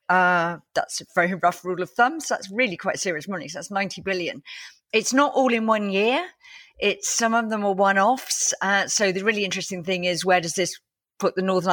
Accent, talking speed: British, 220 wpm